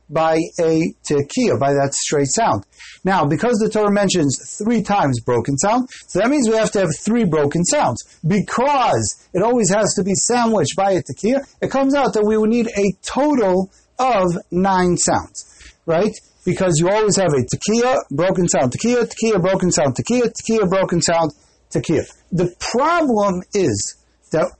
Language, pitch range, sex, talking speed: English, 160-220 Hz, male, 170 wpm